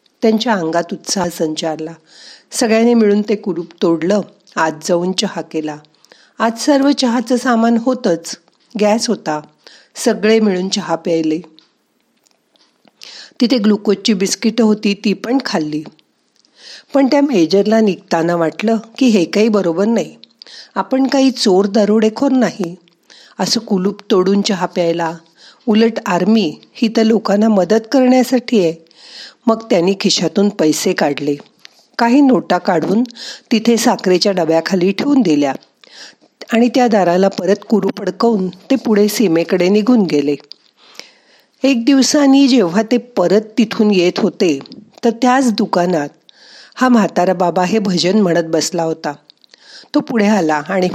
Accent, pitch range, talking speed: native, 175-230 Hz, 110 wpm